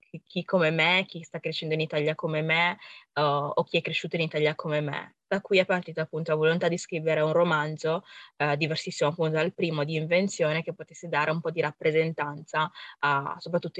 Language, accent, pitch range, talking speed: Italian, native, 155-175 Hz, 200 wpm